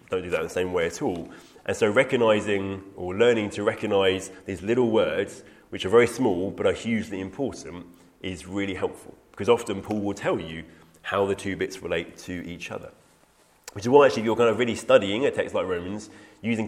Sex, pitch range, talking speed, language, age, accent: male, 90-120 Hz, 210 wpm, English, 30-49, British